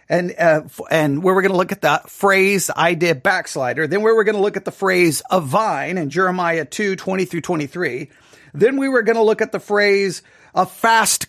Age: 40-59